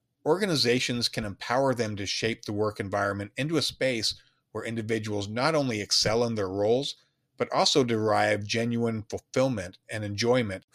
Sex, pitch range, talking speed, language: male, 105-125 Hz, 150 wpm, English